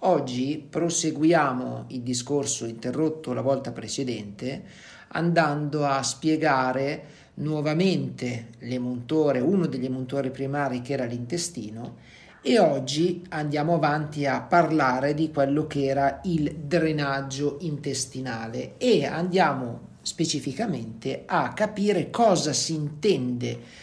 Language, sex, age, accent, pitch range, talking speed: Italian, male, 50-69, native, 130-165 Hz, 100 wpm